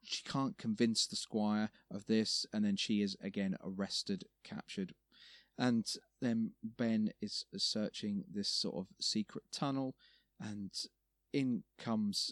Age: 30-49